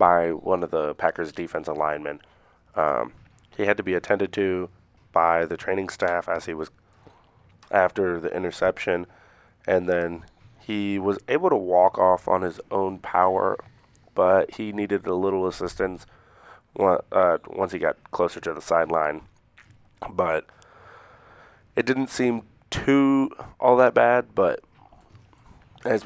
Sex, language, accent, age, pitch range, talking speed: male, English, American, 30-49, 90-110 Hz, 140 wpm